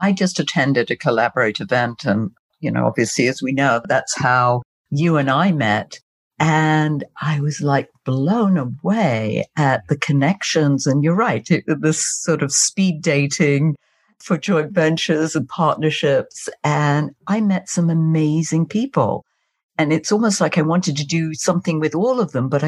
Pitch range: 140-170 Hz